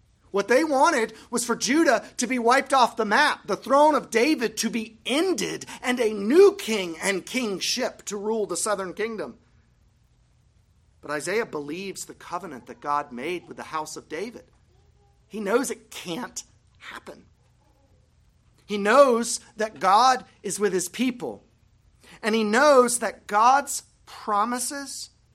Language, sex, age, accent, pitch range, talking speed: English, male, 40-59, American, 180-240 Hz, 145 wpm